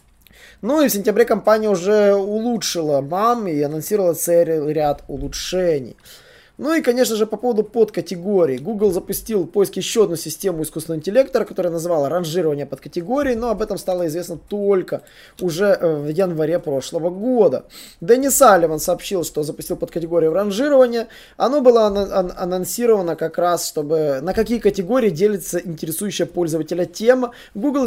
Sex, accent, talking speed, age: male, native, 140 wpm, 20-39